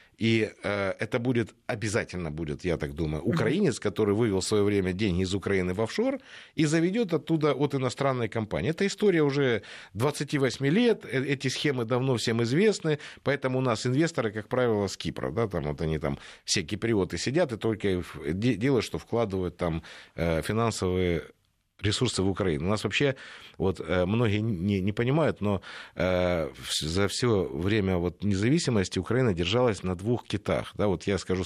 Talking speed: 160 wpm